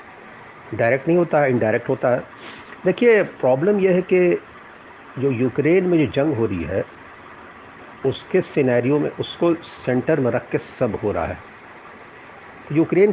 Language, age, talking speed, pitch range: Hindi, 50-69, 150 wpm, 110-150 Hz